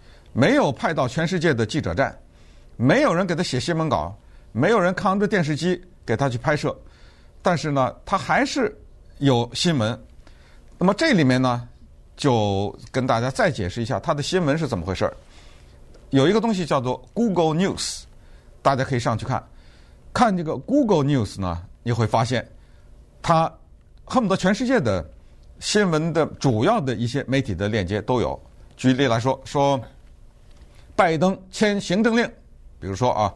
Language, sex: Chinese, male